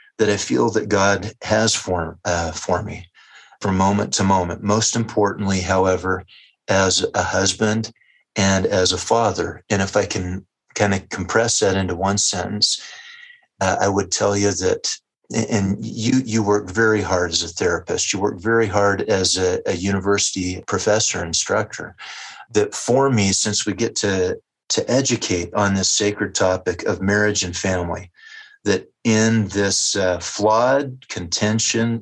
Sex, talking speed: male, 155 wpm